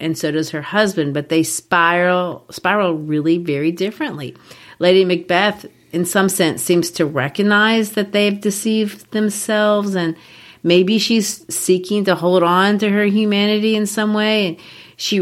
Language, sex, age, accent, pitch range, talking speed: English, female, 40-59, American, 155-195 Hz, 150 wpm